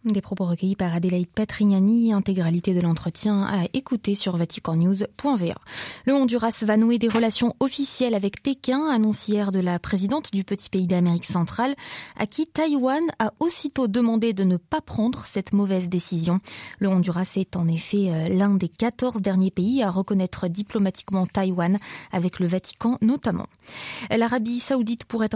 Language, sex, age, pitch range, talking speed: French, female, 20-39, 185-230 Hz, 155 wpm